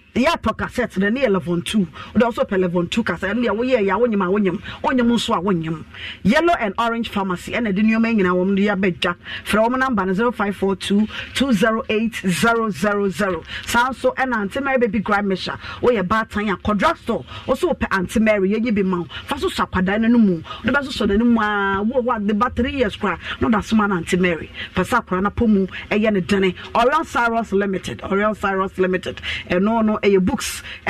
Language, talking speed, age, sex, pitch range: English, 110 wpm, 40-59, female, 190-235 Hz